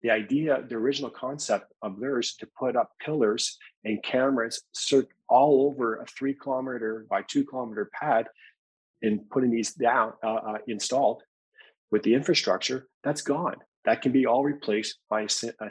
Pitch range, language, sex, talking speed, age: 110-135 Hz, English, male, 155 wpm, 40-59